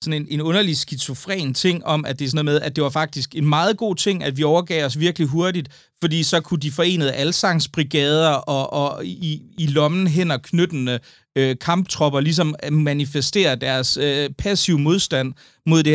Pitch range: 130-160 Hz